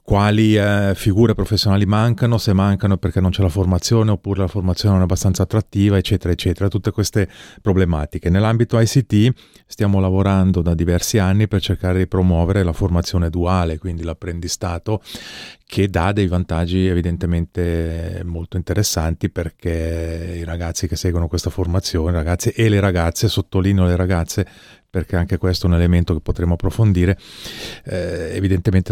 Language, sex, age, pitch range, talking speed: Italian, male, 30-49, 85-100 Hz, 150 wpm